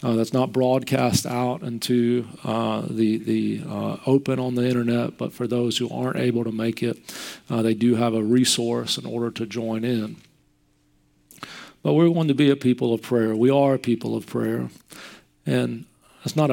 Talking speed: 190 wpm